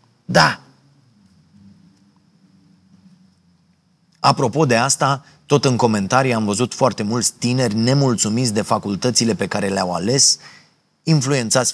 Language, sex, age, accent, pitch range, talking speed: Romanian, male, 30-49, native, 110-145 Hz, 100 wpm